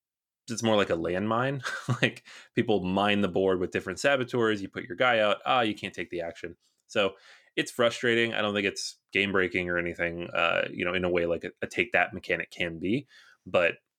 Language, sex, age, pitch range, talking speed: English, male, 30-49, 90-125 Hz, 215 wpm